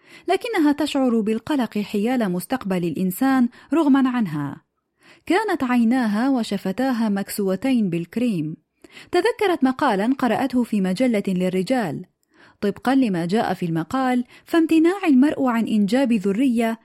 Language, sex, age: Arabic, female, 30-49